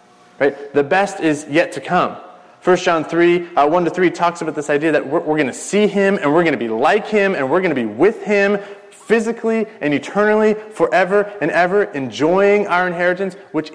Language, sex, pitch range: English, male, 150-205 Hz